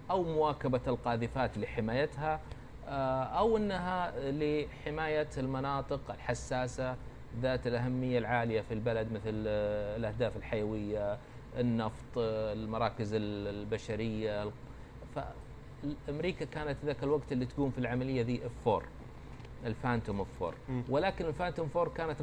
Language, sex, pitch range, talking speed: Persian, male, 120-150 Hz, 95 wpm